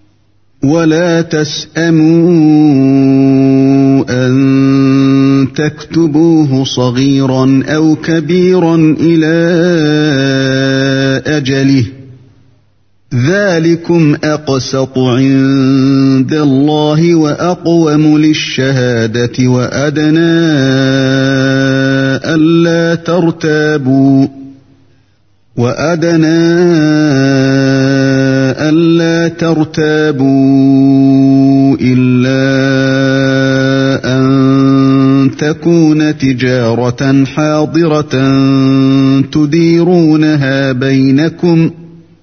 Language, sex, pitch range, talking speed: Arabic, male, 135-160 Hz, 40 wpm